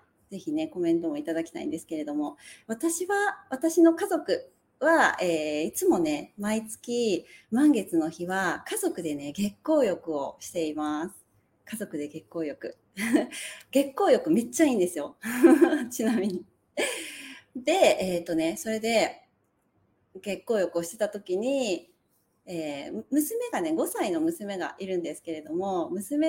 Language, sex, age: Japanese, female, 30-49